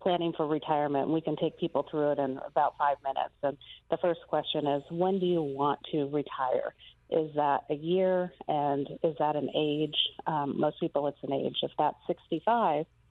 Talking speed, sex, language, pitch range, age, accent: 190 wpm, female, English, 150-175 Hz, 40-59, American